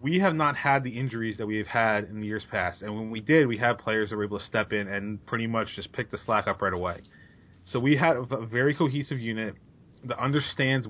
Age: 30-49